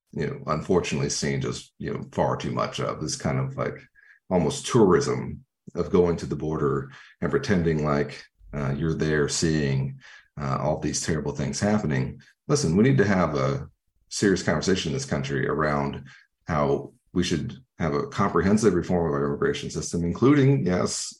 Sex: male